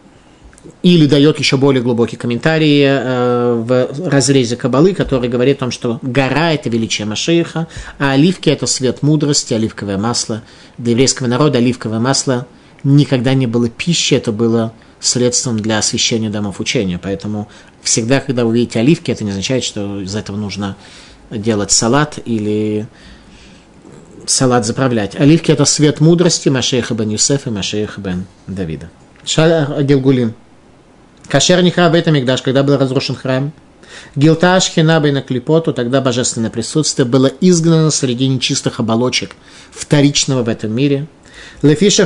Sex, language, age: male, Russian, 30-49